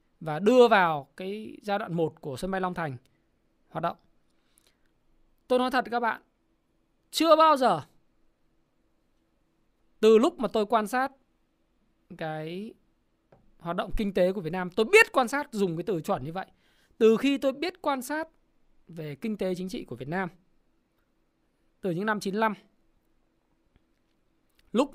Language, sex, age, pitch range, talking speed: Vietnamese, male, 20-39, 170-230 Hz, 155 wpm